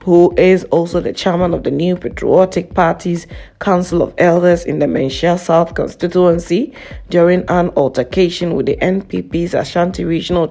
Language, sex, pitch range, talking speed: English, female, 170-185 Hz, 150 wpm